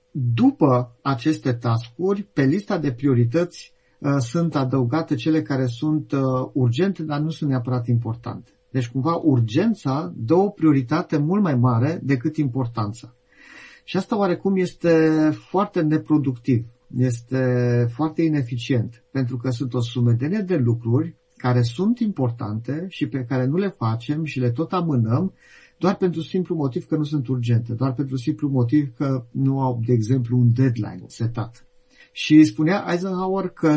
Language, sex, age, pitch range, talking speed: Romanian, male, 50-69, 125-160 Hz, 145 wpm